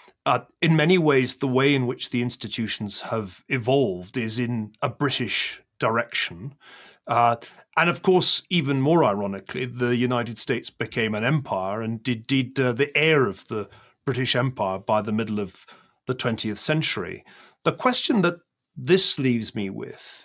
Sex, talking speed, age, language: male, 160 wpm, 40-59, English